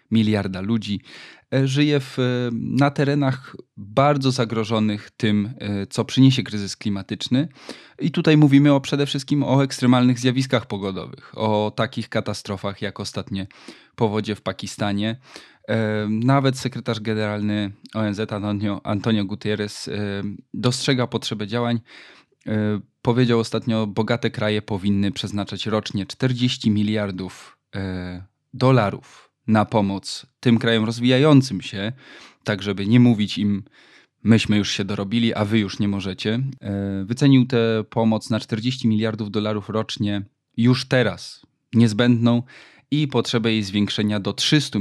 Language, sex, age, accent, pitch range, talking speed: Polish, male, 20-39, native, 100-125 Hz, 120 wpm